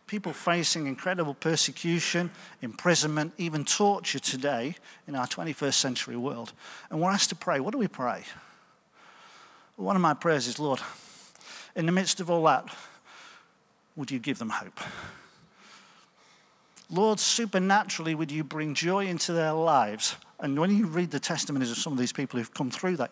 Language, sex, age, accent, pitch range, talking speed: English, male, 50-69, British, 140-205 Hz, 165 wpm